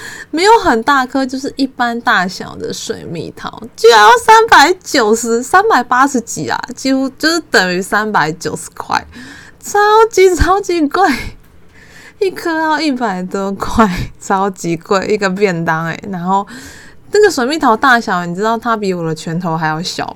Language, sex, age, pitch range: Chinese, female, 20-39, 190-285 Hz